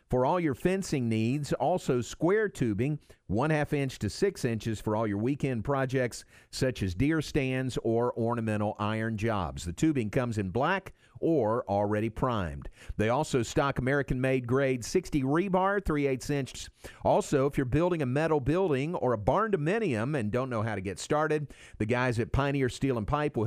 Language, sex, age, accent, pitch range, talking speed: English, male, 50-69, American, 110-150 Hz, 180 wpm